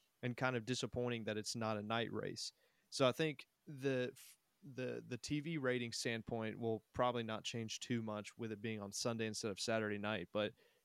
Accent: American